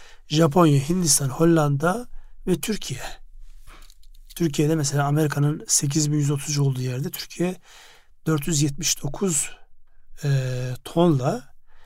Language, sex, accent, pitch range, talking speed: Turkish, male, native, 145-170 Hz, 75 wpm